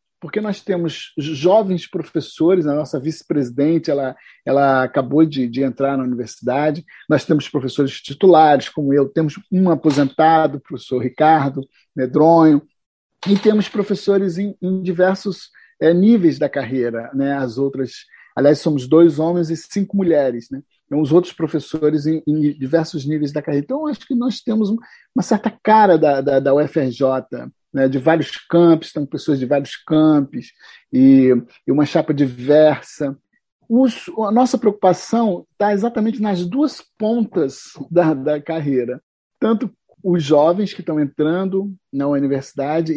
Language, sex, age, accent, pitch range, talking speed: Portuguese, male, 50-69, Brazilian, 140-185 Hz, 150 wpm